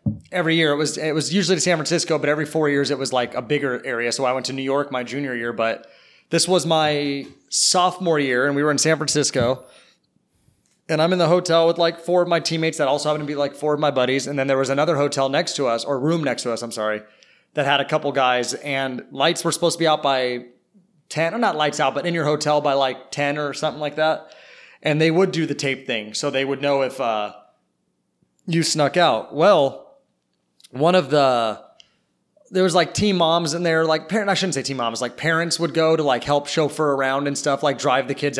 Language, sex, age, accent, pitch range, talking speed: English, male, 30-49, American, 135-165 Hz, 245 wpm